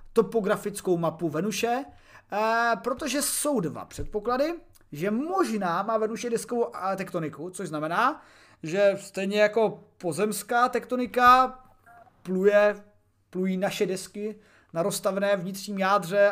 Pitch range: 175-215 Hz